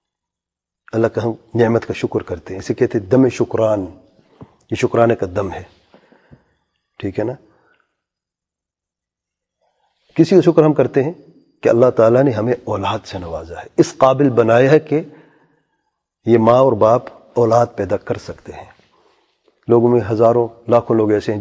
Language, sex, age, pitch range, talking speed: English, male, 40-59, 115-160 Hz, 155 wpm